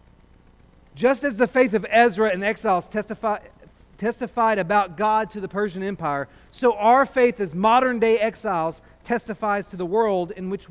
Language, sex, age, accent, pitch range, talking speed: English, male, 40-59, American, 175-235 Hz, 155 wpm